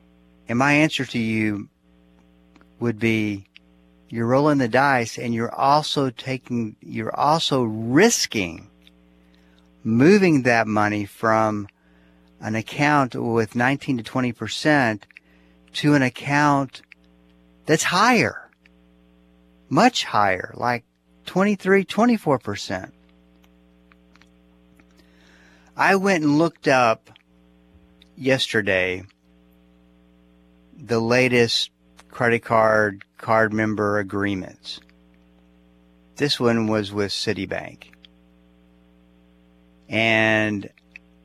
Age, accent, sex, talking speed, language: 50-69, American, male, 80 wpm, English